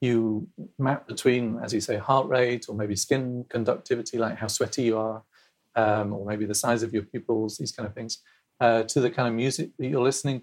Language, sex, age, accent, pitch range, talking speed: English, male, 40-59, British, 115-145 Hz, 220 wpm